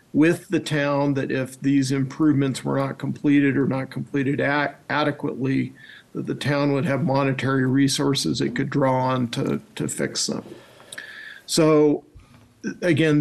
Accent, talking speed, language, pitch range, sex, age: American, 140 wpm, English, 130-155 Hz, male, 50-69